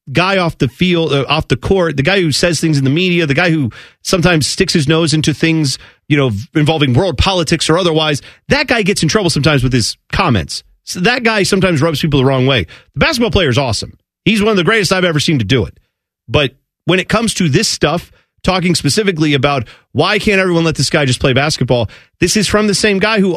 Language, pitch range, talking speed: English, 145-185 Hz, 235 wpm